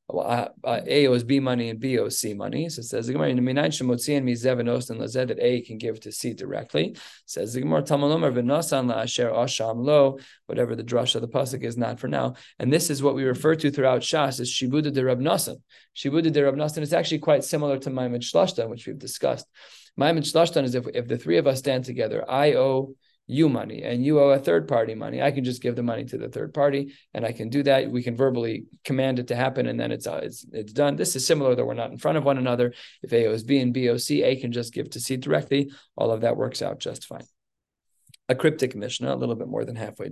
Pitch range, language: 120-140 Hz, English